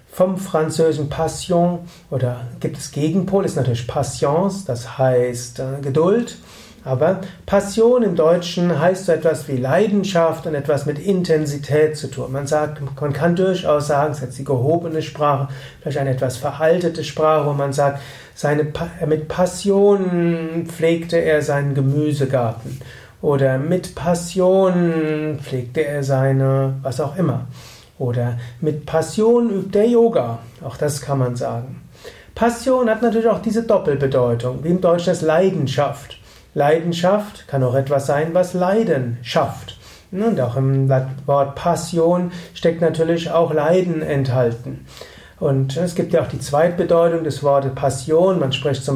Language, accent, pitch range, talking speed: German, German, 135-175 Hz, 145 wpm